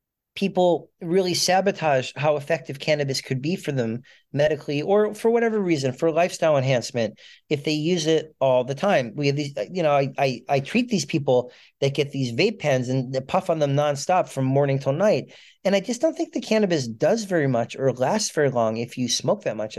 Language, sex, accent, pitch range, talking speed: English, male, American, 135-165 Hz, 210 wpm